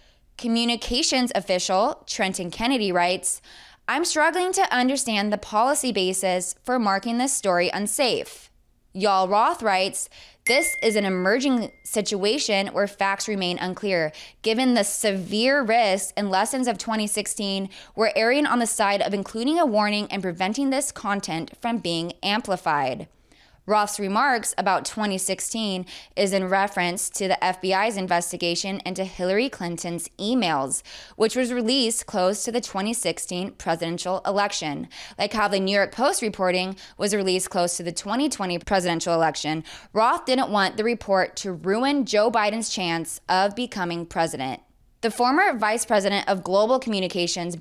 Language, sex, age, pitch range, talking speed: English, female, 20-39, 185-235 Hz, 140 wpm